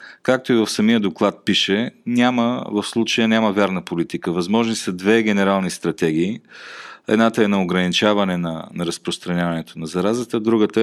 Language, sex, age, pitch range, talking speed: Bulgarian, male, 40-59, 95-110 Hz, 150 wpm